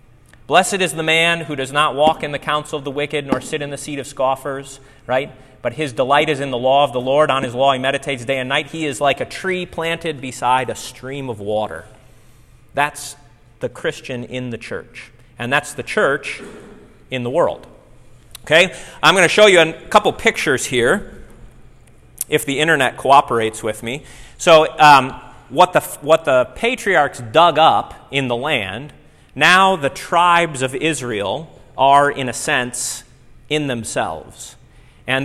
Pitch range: 125-160 Hz